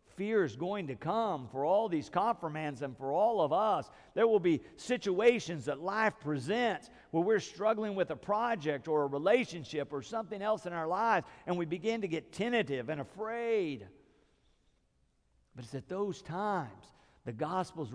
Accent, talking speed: American, 170 wpm